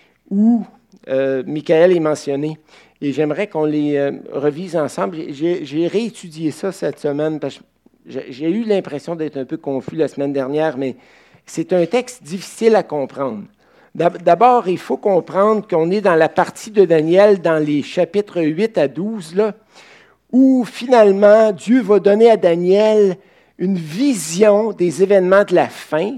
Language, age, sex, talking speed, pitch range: French, 60-79, male, 155 wpm, 155-205 Hz